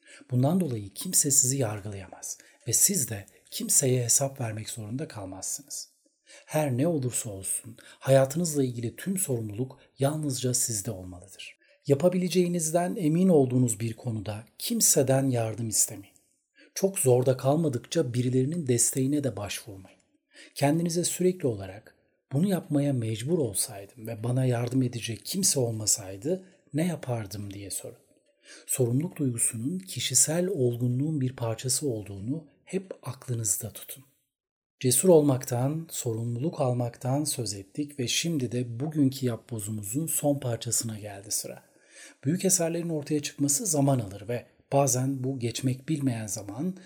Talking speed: 120 wpm